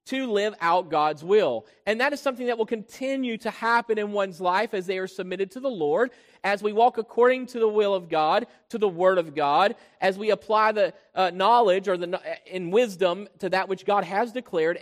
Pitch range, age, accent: 190-250 Hz, 40-59, American